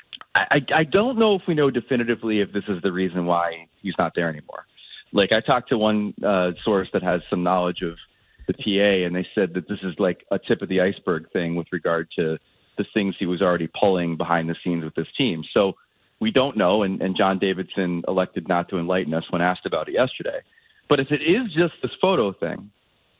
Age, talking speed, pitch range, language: 30-49, 220 wpm, 95-135 Hz, English